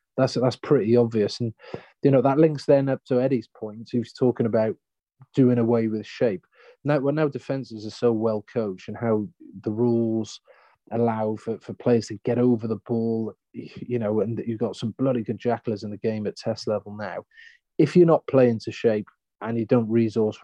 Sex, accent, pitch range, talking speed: male, British, 105-125 Hz, 205 wpm